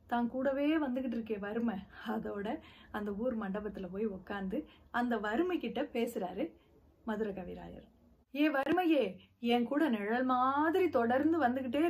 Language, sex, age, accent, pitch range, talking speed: Tamil, female, 30-49, native, 225-285 Hz, 120 wpm